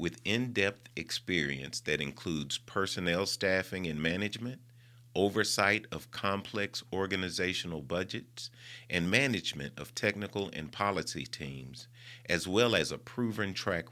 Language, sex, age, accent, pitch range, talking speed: English, male, 40-59, American, 85-120 Hz, 115 wpm